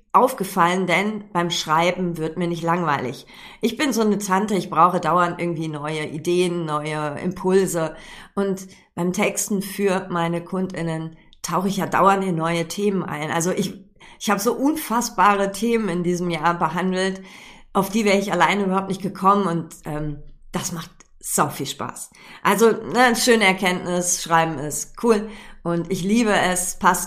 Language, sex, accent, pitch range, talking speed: German, female, German, 165-200 Hz, 160 wpm